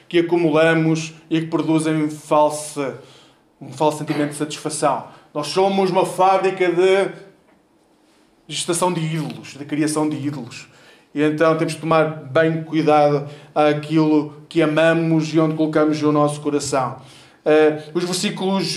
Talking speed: 140 wpm